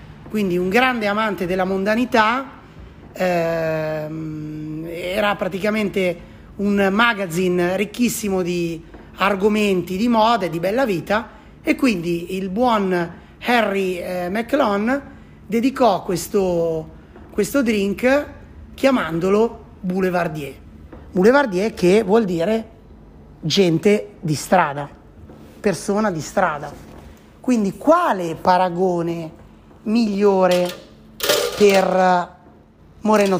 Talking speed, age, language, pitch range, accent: 90 wpm, 30-49, Italian, 180-215 Hz, native